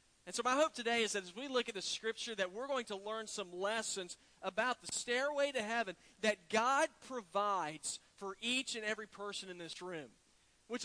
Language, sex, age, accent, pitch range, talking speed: English, male, 40-59, American, 185-240 Hz, 205 wpm